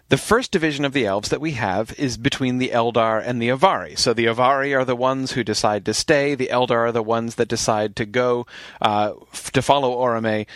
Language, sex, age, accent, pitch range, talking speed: English, male, 40-59, American, 115-155 Hz, 220 wpm